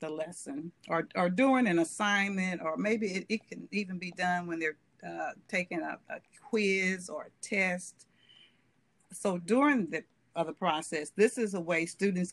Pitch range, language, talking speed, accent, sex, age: 155-190 Hz, English, 170 wpm, American, female, 50-69